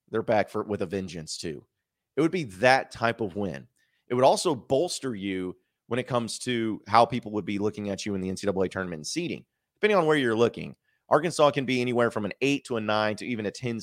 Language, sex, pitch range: English, male, 95-125 Hz